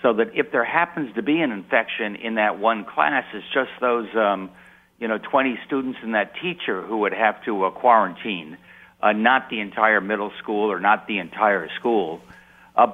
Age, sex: 60-79, male